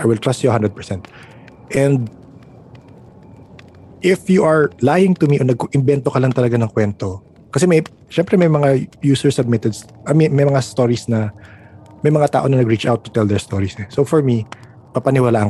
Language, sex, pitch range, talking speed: Filipino, male, 105-135 Hz, 180 wpm